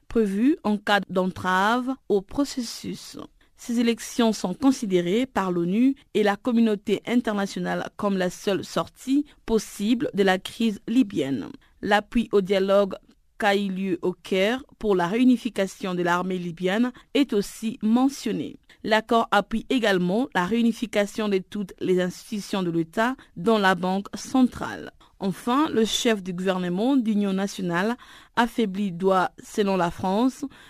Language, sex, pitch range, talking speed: French, female, 190-240 Hz, 135 wpm